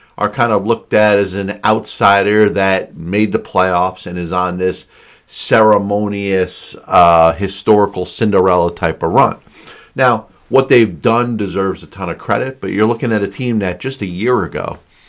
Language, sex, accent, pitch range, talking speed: English, male, American, 95-110 Hz, 170 wpm